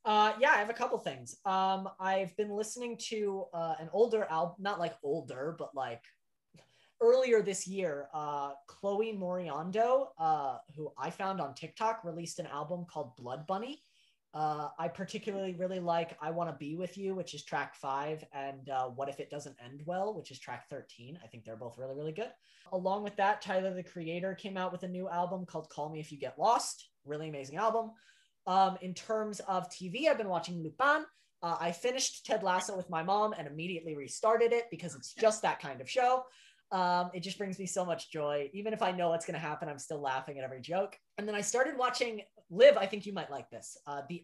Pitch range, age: 160-220 Hz, 20-39